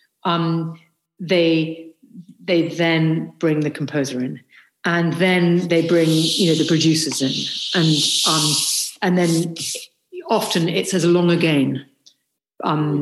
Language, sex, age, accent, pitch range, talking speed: English, female, 50-69, British, 155-185 Hz, 125 wpm